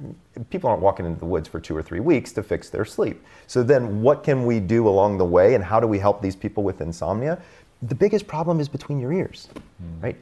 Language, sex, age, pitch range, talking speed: English, male, 30-49, 90-135 Hz, 240 wpm